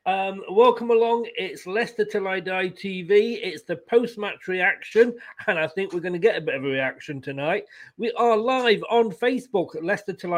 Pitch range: 160-220 Hz